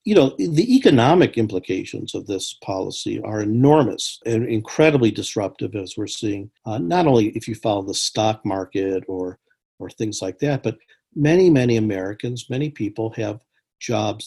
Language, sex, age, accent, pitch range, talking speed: English, male, 50-69, American, 105-125 Hz, 160 wpm